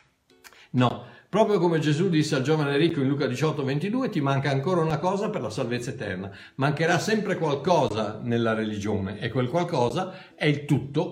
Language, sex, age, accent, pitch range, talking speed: Italian, male, 60-79, native, 130-180 Hz, 175 wpm